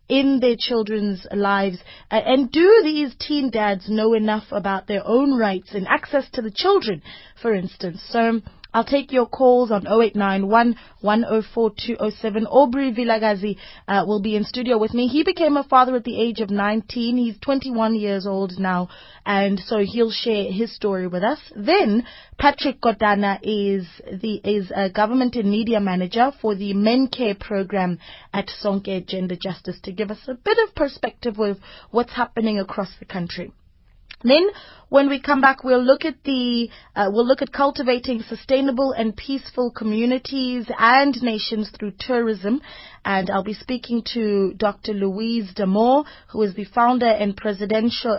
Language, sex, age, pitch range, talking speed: English, female, 20-39, 205-255 Hz, 160 wpm